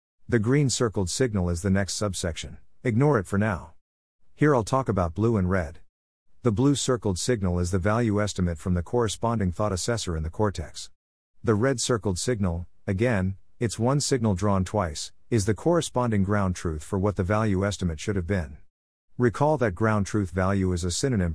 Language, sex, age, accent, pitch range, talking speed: English, male, 50-69, American, 90-120 Hz, 185 wpm